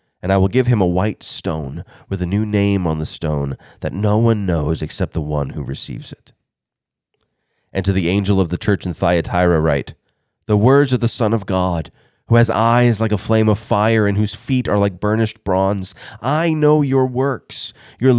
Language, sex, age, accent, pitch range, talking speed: English, male, 30-49, American, 100-140 Hz, 205 wpm